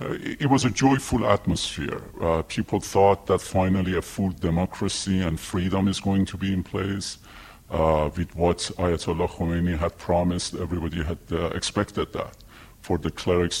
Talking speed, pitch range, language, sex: 160 wpm, 85-100 Hz, English, female